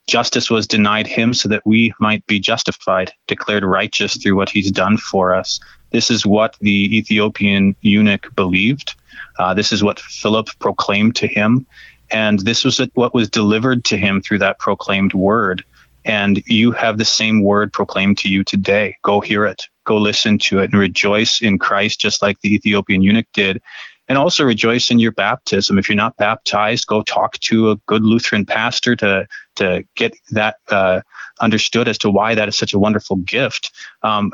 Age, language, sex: 30-49, English, male